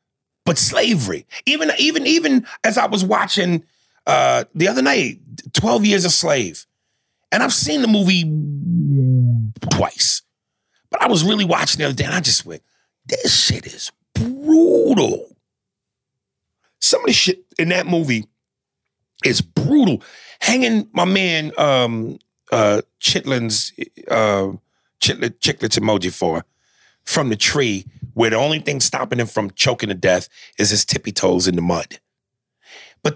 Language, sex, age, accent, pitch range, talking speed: English, male, 40-59, American, 105-175 Hz, 145 wpm